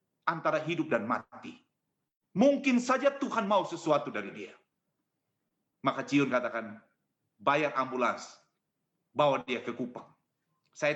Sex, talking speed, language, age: male, 115 wpm, English, 40-59